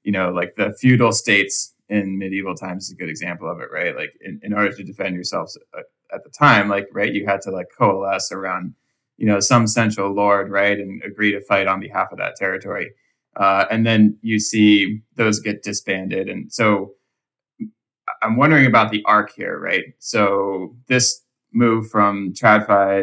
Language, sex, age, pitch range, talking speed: English, male, 20-39, 100-110 Hz, 185 wpm